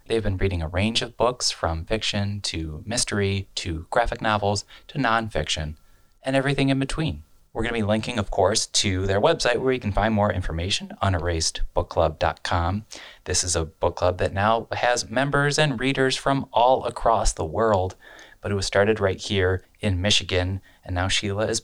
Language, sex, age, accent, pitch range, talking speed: English, male, 30-49, American, 95-125 Hz, 185 wpm